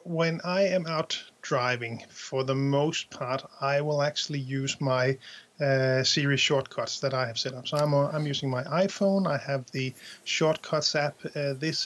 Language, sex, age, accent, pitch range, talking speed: English, male, 30-49, Danish, 135-155 Hz, 180 wpm